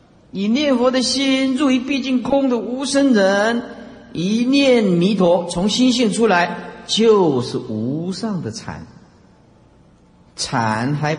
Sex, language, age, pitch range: male, Chinese, 50-69, 130-205 Hz